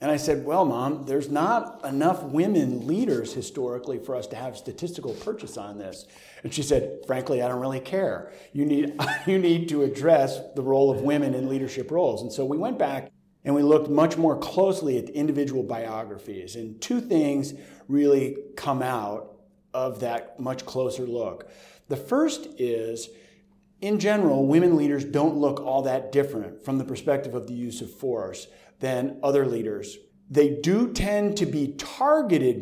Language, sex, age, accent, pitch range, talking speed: English, male, 40-59, American, 130-170 Hz, 175 wpm